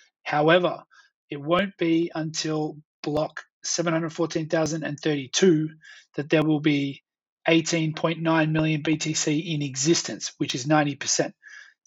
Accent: Australian